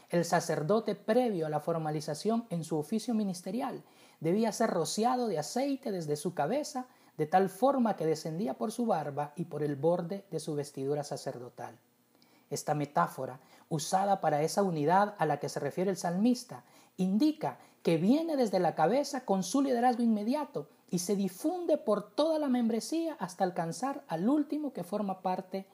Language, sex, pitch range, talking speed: Spanish, male, 160-240 Hz, 165 wpm